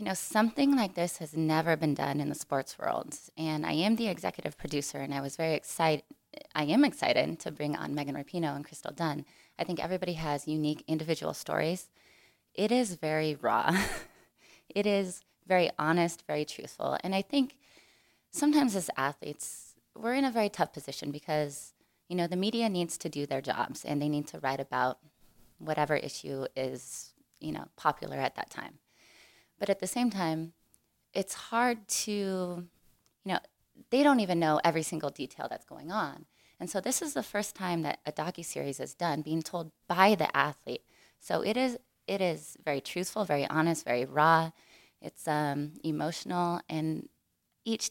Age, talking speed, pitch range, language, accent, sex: 20-39, 180 wpm, 150-195 Hz, English, American, female